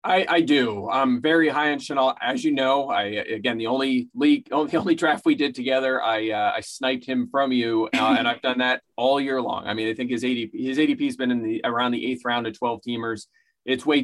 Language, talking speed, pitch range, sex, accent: English, 235 wpm, 115-150 Hz, male, American